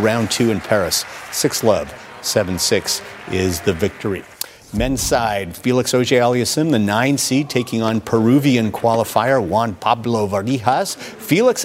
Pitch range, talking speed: 105-140 Hz, 135 wpm